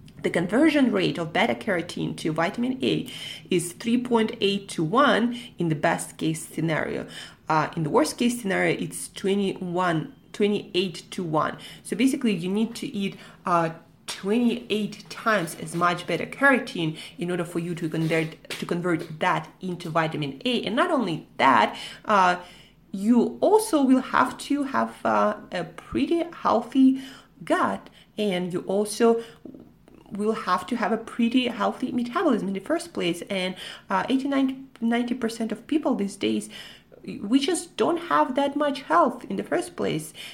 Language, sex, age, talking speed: English, female, 30-49, 150 wpm